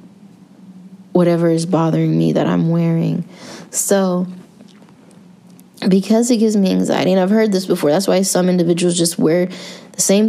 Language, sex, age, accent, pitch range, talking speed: English, female, 20-39, American, 170-205 Hz, 150 wpm